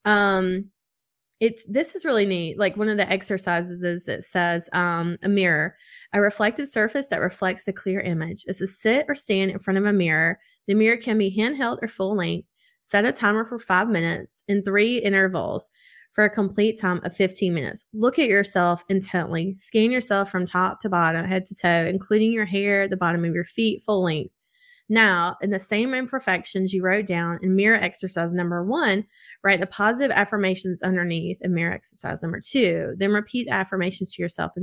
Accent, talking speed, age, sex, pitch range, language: American, 195 wpm, 20-39, female, 180-215 Hz, English